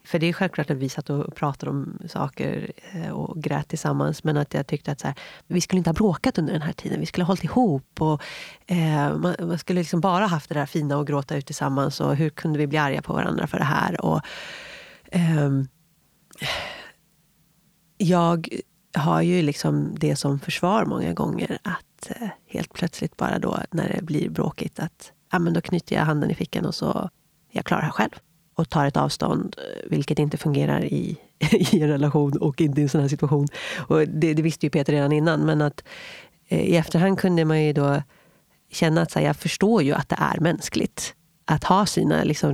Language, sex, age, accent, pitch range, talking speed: Swedish, female, 30-49, native, 145-170 Hz, 205 wpm